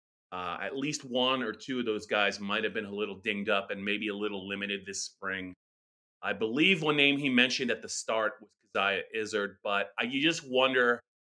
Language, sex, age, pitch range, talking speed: English, male, 30-49, 105-140 Hz, 210 wpm